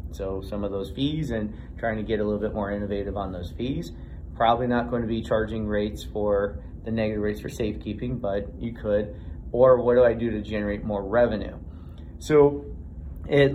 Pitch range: 100-135 Hz